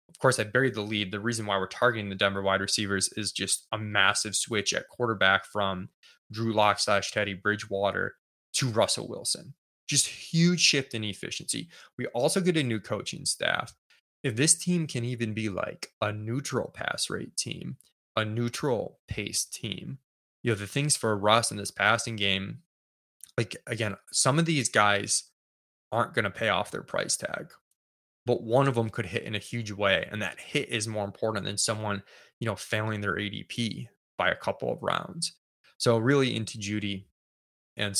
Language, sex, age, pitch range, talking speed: English, male, 20-39, 100-120 Hz, 185 wpm